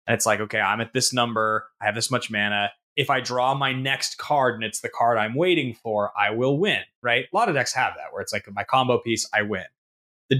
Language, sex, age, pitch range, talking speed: English, male, 20-39, 115-165 Hz, 260 wpm